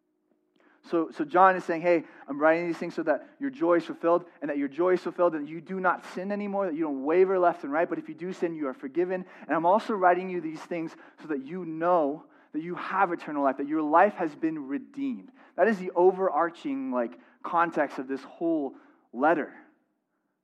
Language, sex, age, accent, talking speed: English, male, 20-39, American, 215 wpm